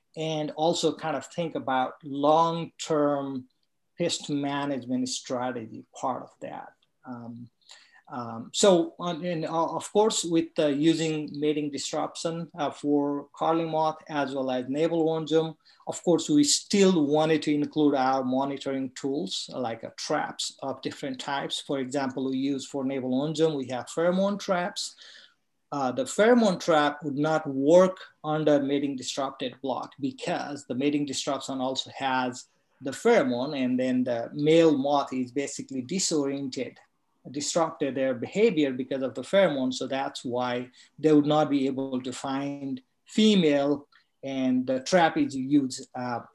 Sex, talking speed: male, 140 wpm